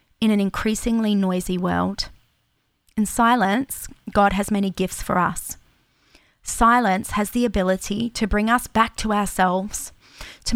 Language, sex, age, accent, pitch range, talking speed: English, female, 20-39, Australian, 190-235 Hz, 135 wpm